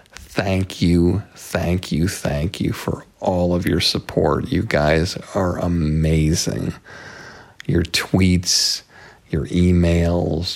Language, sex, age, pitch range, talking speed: English, male, 50-69, 80-90 Hz, 110 wpm